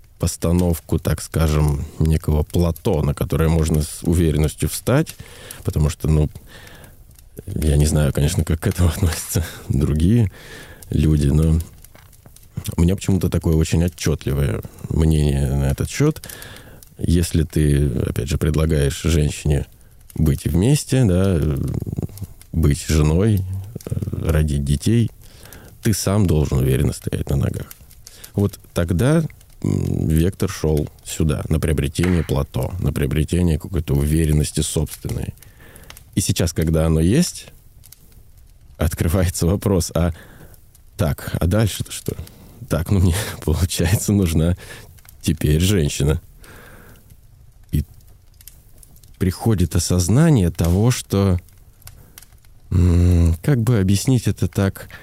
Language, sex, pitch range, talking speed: Russian, male, 80-105 Hz, 105 wpm